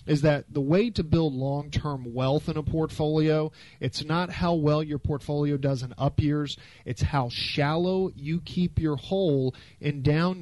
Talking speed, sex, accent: 175 wpm, male, American